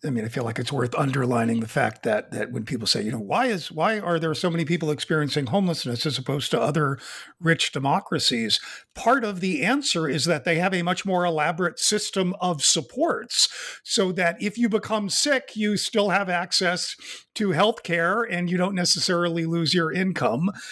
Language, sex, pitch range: English, male, 155-215 Hz